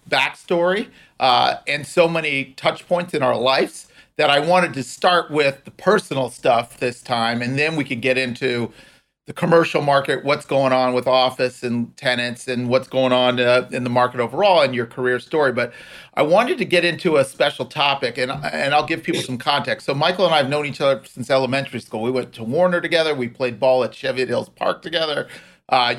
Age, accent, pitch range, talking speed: 40-59, American, 125-155 Hz, 210 wpm